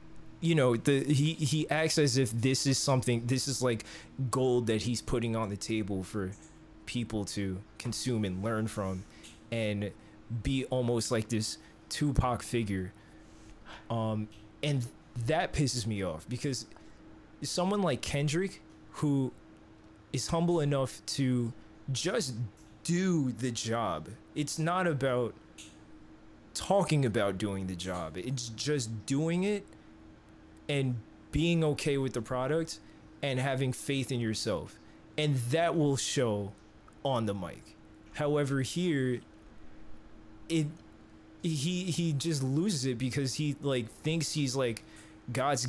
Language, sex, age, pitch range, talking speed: English, male, 20-39, 105-150 Hz, 130 wpm